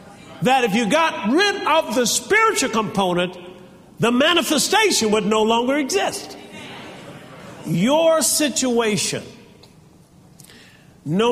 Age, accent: 50-69, American